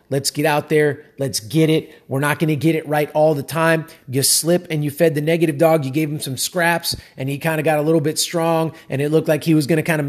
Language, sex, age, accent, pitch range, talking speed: English, male, 30-49, American, 155-195 Hz, 290 wpm